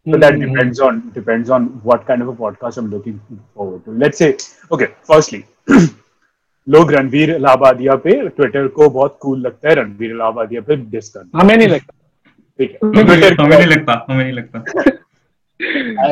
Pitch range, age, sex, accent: 125-160 Hz, 30-49, male, native